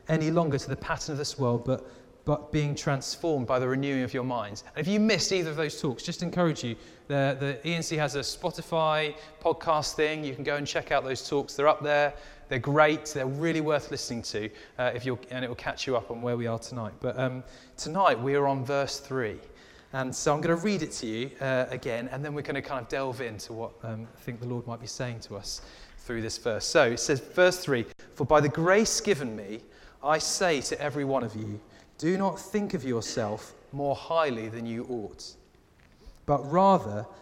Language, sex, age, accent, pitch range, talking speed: English, male, 20-39, British, 125-160 Hz, 225 wpm